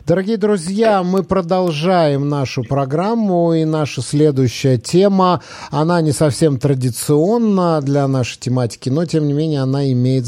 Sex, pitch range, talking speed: male, 120-155 Hz, 135 wpm